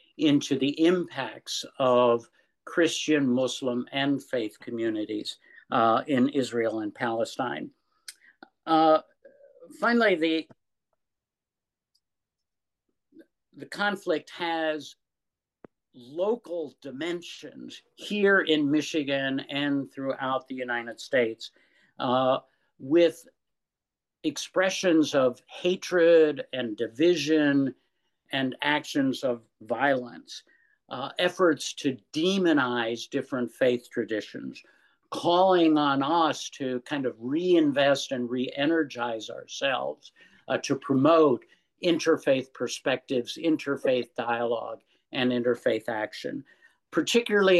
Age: 60-79